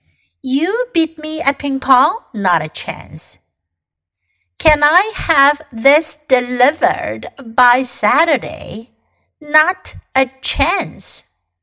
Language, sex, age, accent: Chinese, female, 60-79, American